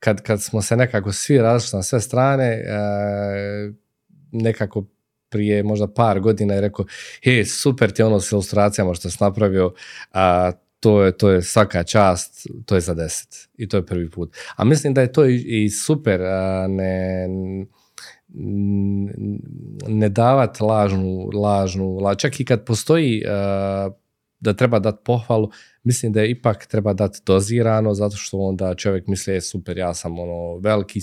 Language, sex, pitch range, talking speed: Croatian, male, 95-110 Hz, 150 wpm